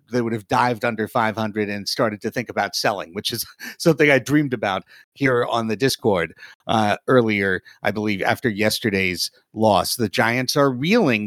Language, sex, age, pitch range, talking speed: English, male, 50-69, 110-130 Hz, 175 wpm